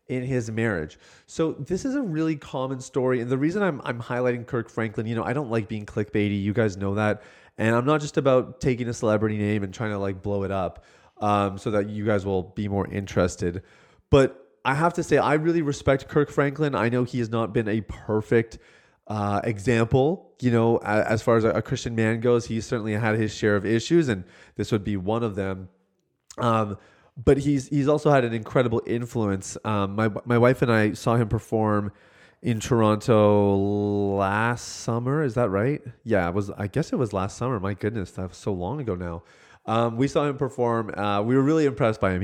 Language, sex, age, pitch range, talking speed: English, male, 30-49, 105-130 Hz, 215 wpm